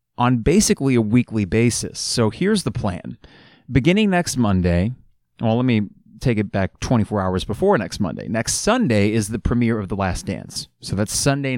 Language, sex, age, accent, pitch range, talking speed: English, male, 30-49, American, 100-125 Hz, 180 wpm